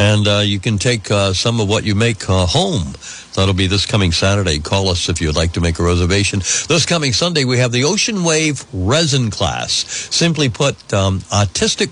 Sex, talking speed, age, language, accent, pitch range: male, 205 wpm, 60-79, English, American, 95-125 Hz